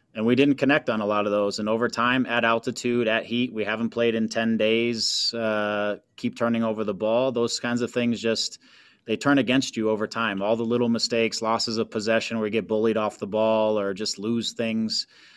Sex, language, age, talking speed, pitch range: male, English, 30-49, 220 wpm, 110-120 Hz